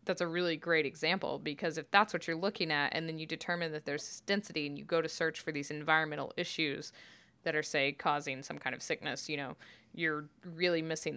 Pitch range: 155-185 Hz